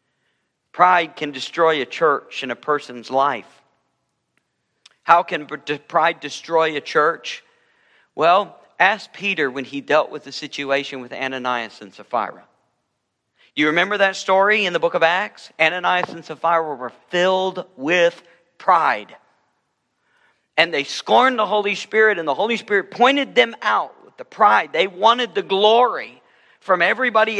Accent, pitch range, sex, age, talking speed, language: American, 145-210 Hz, male, 50-69, 145 wpm, English